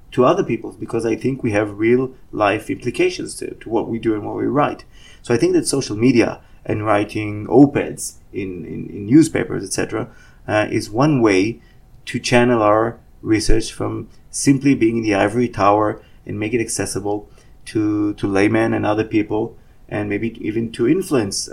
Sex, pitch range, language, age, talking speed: male, 105-125 Hz, English, 30-49, 180 wpm